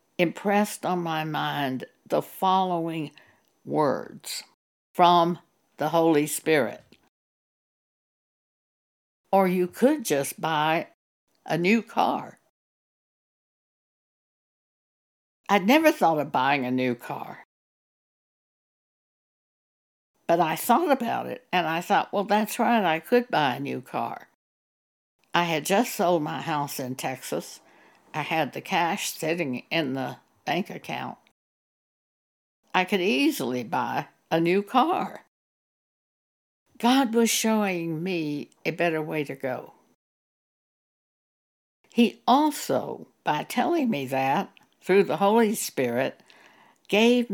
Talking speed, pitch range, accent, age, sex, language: 110 wpm, 150-215 Hz, American, 60-79, female, English